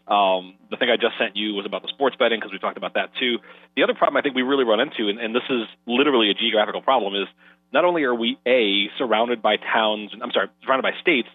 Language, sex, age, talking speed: English, male, 30-49, 260 wpm